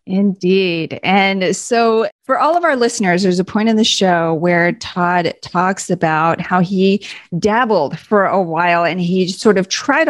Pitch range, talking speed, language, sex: 175-220 Hz, 170 wpm, English, female